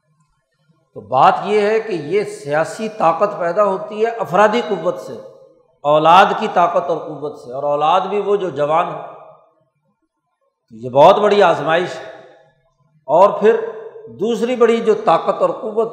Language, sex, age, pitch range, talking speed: Urdu, male, 60-79, 170-210 Hz, 160 wpm